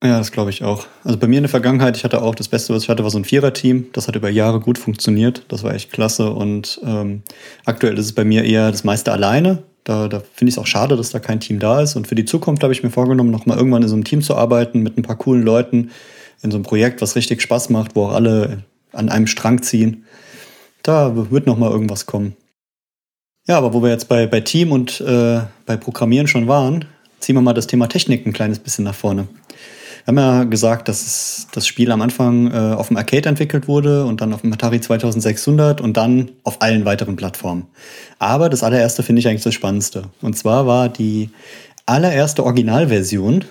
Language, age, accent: German, 30-49, German